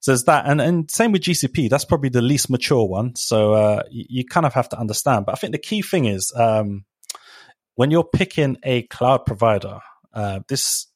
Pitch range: 105-125 Hz